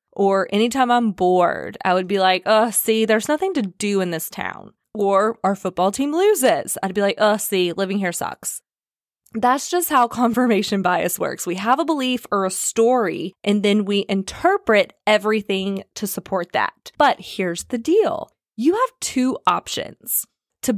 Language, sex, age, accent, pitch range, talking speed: English, female, 20-39, American, 190-255 Hz, 175 wpm